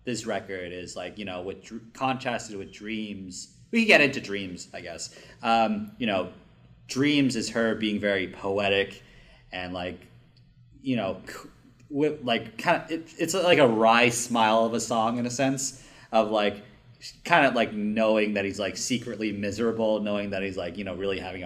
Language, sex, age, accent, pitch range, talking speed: English, male, 30-49, American, 100-125 Hz, 180 wpm